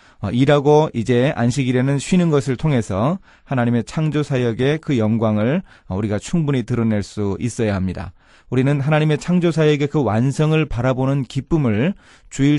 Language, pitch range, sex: Korean, 105-145 Hz, male